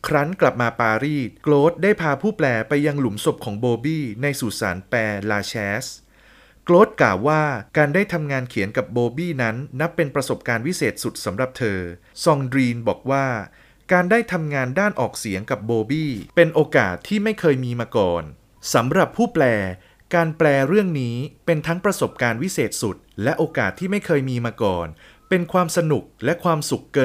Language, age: Thai, 30-49